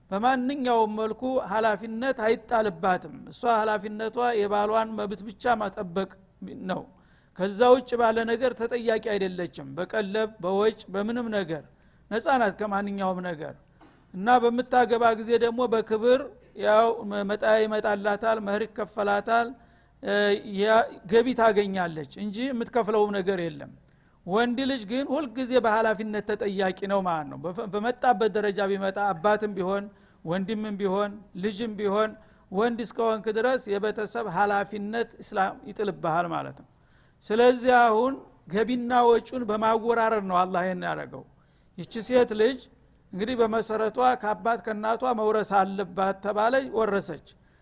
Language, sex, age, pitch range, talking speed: Amharic, male, 60-79, 200-230 Hz, 105 wpm